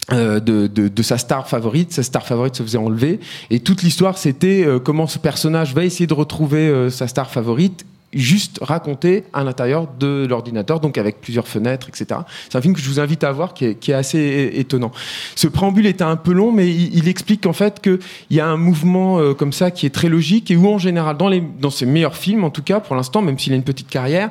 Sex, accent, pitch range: male, French, 135-175 Hz